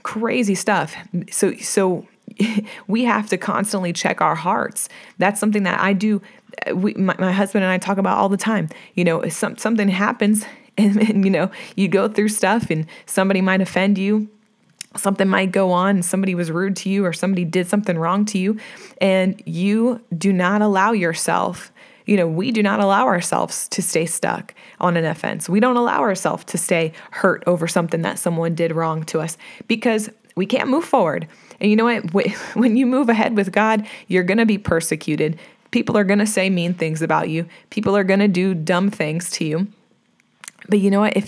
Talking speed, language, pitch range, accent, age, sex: 205 wpm, English, 175-210 Hz, American, 20-39, female